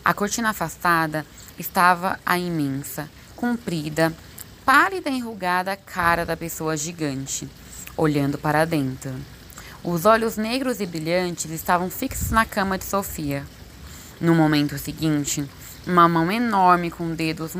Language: Portuguese